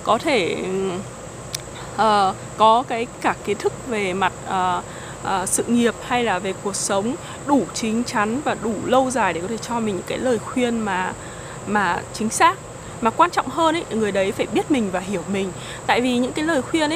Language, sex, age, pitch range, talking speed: Vietnamese, female, 20-39, 200-255 Hz, 205 wpm